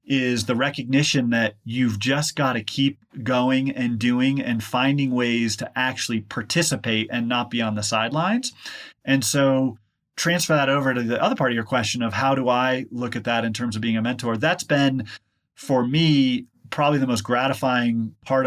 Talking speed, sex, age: 190 wpm, male, 30-49